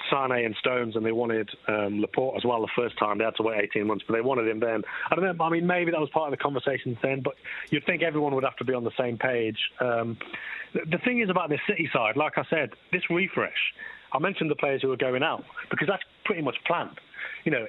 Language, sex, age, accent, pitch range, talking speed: English, male, 30-49, British, 110-170 Hz, 265 wpm